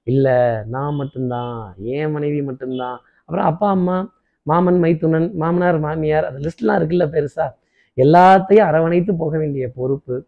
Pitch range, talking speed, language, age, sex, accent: 145-180 Hz, 130 wpm, Tamil, 20-39, male, native